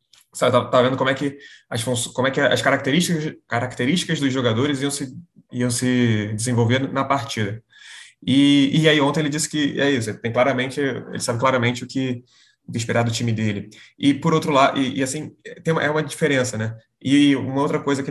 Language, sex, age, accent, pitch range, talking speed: Portuguese, male, 20-39, Brazilian, 120-150 Hz, 200 wpm